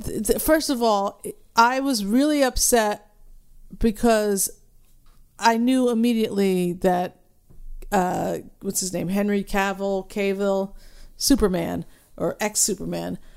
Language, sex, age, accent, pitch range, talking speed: English, female, 50-69, American, 185-240 Hz, 100 wpm